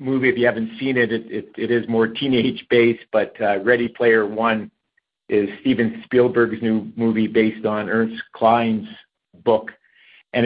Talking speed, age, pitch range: 160 wpm, 50-69, 110-125 Hz